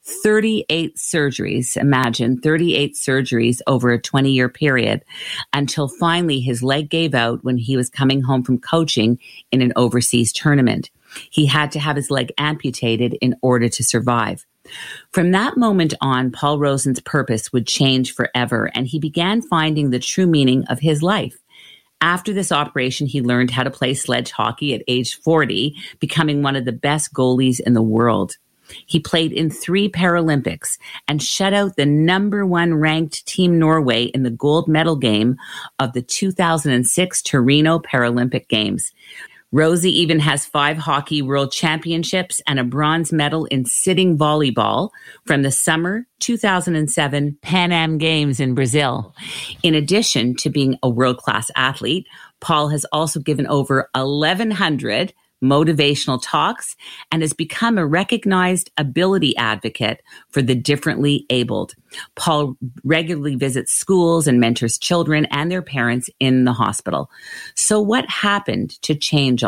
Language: English